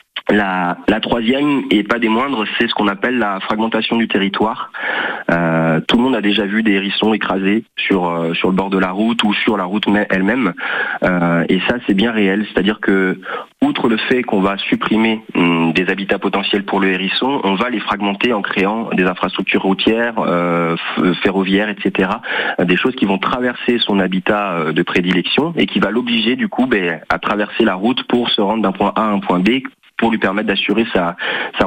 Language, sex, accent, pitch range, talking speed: French, male, French, 95-110 Hz, 210 wpm